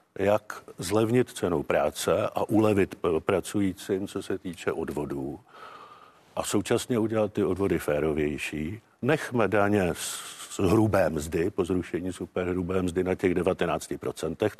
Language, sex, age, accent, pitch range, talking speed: Czech, male, 50-69, native, 95-125 Hz, 120 wpm